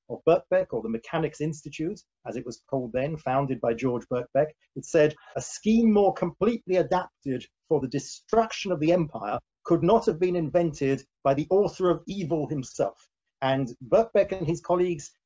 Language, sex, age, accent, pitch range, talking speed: English, male, 40-59, British, 135-180 Hz, 175 wpm